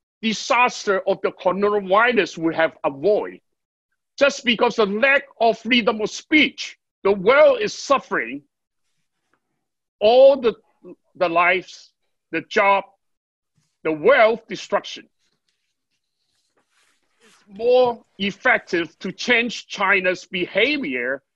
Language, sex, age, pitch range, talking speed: English, male, 60-79, 175-240 Hz, 100 wpm